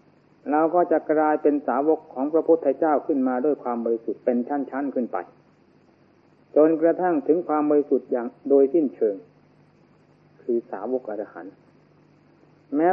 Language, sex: Thai, male